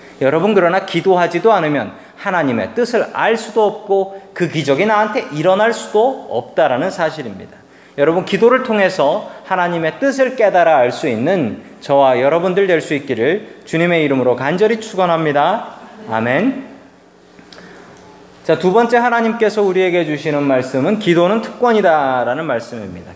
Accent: native